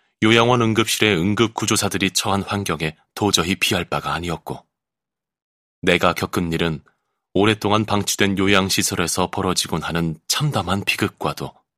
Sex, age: male, 30-49